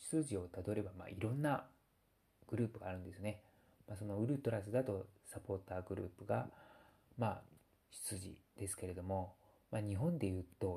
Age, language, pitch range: 40-59, Japanese, 95-115 Hz